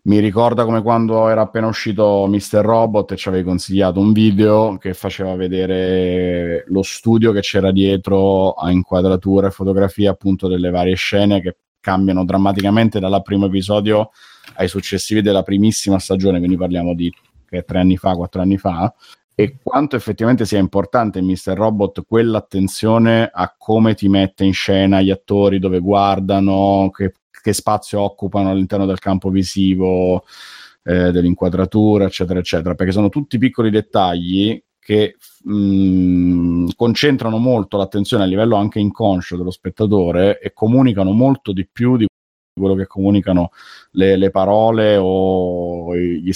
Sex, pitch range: male, 90-105 Hz